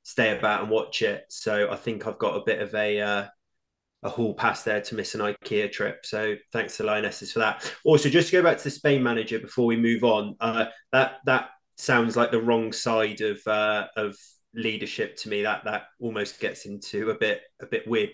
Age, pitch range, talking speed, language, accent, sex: 20-39, 105-125 Hz, 220 wpm, English, British, male